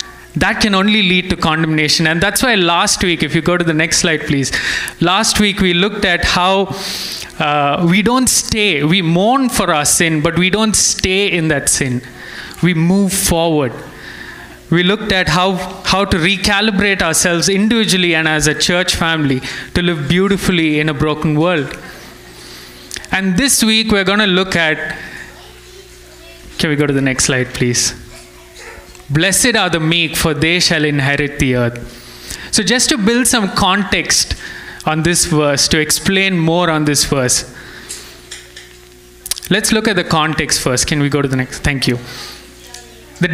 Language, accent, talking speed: English, Indian, 165 wpm